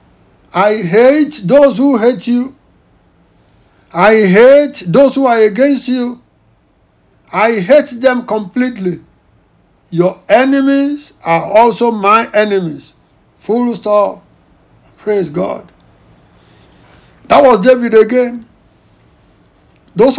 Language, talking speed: English, 95 wpm